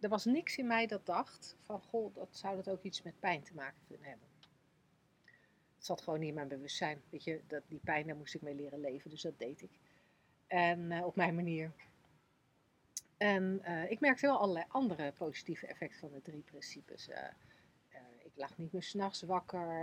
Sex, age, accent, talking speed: female, 40-59, Dutch, 205 wpm